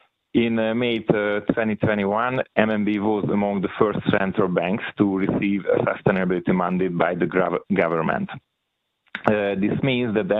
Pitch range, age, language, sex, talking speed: 95-110 Hz, 40-59, Hungarian, male, 125 wpm